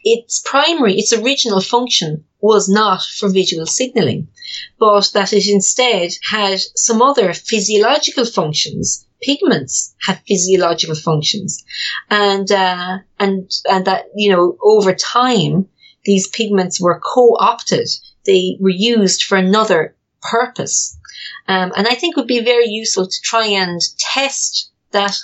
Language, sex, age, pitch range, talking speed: English, female, 40-59, 175-220 Hz, 135 wpm